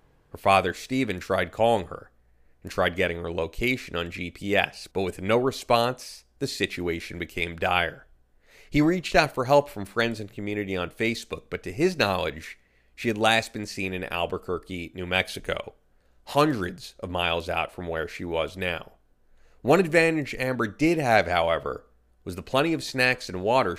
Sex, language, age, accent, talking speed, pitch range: male, English, 30-49, American, 170 wpm, 85-130 Hz